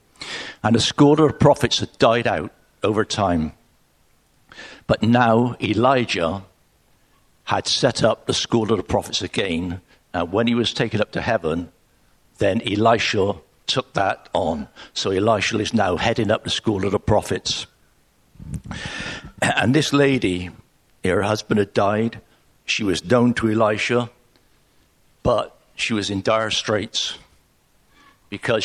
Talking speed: 140 wpm